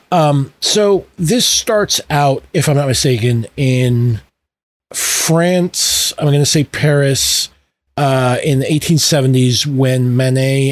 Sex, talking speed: male, 125 wpm